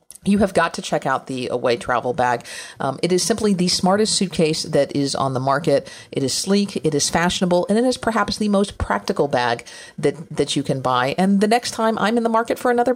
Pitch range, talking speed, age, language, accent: 150-205 Hz, 235 wpm, 40-59, English, American